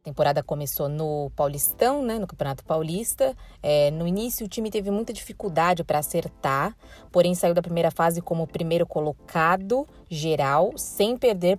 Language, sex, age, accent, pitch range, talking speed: Portuguese, female, 20-39, Brazilian, 150-195 Hz, 160 wpm